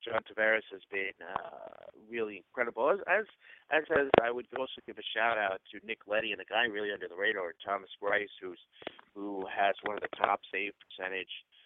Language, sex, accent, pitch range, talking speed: English, male, American, 105-130 Hz, 195 wpm